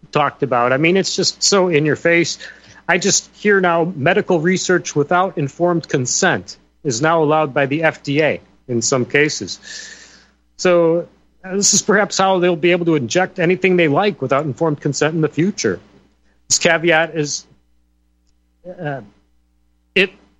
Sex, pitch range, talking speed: male, 130-175 Hz, 155 wpm